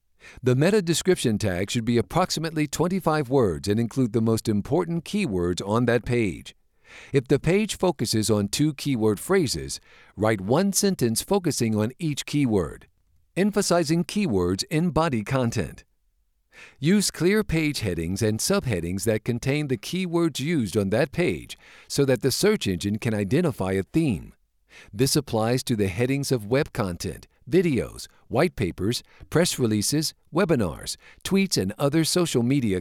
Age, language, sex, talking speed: 50-69, English, male, 145 wpm